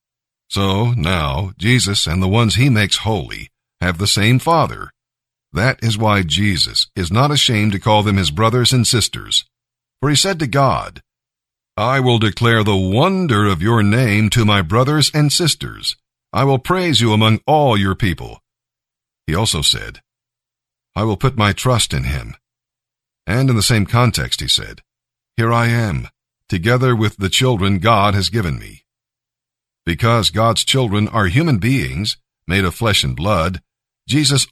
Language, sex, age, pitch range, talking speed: English, male, 50-69, 100-130 Hz, 160 wpm